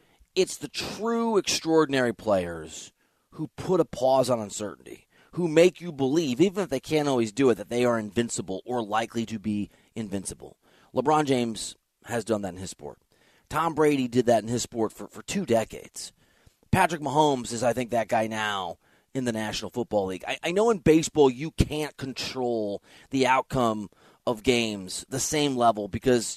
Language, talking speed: English, 180 wpm